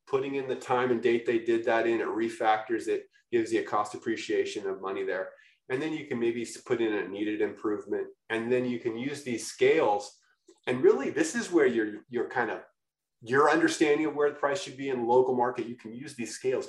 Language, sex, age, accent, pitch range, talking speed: English, male, 30-49, American, 330-400 Hz, 225 wpm